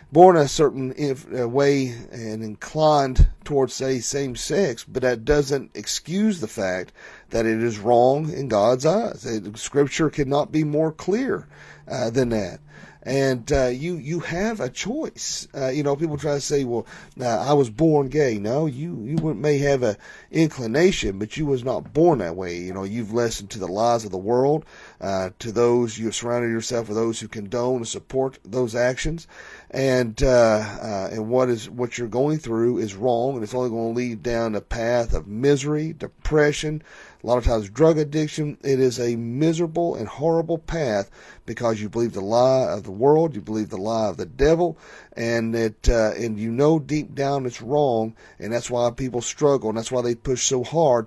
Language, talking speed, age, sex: English, 195 wpm, 40-59, male